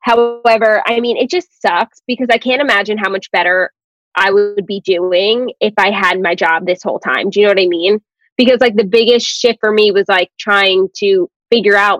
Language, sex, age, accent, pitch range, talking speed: English, female, 20-39, American, 200-245 Hz, 220 wpm